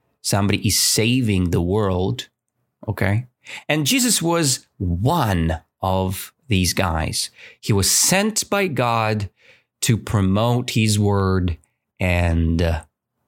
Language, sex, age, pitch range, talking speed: English, male, 30-49, 95-120 Hz, 105 wpm